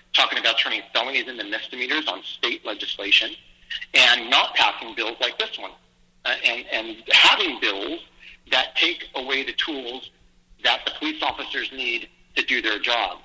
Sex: male